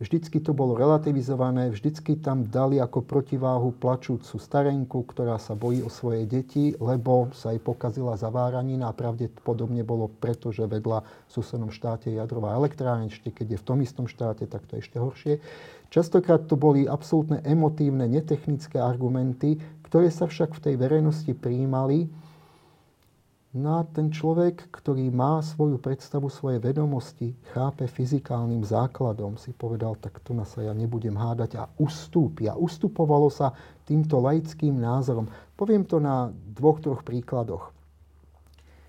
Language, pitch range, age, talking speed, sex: Slovak, 115-150 Hz, 30-49, 145 wpm, male